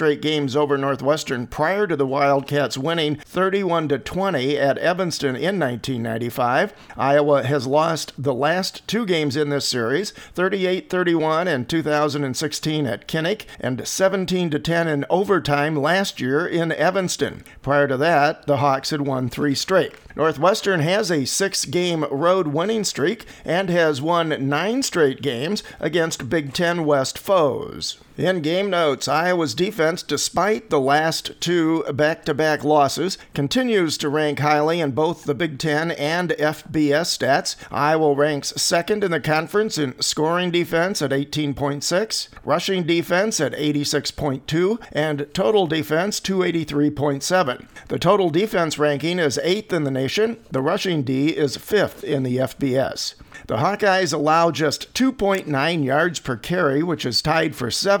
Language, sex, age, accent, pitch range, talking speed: English, male, 50-69, American, 145-175 Hz, 140 wpm